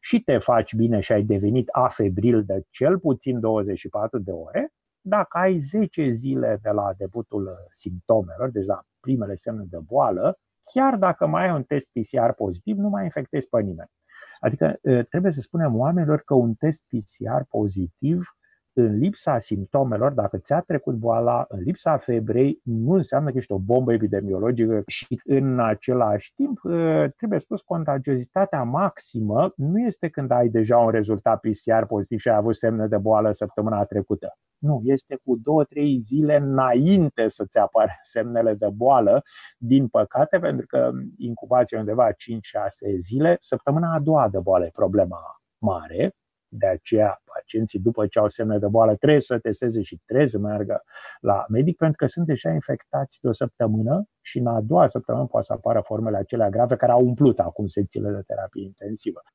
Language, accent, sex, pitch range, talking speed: Romanian, native, male, 110-150 Hz, 170 wpm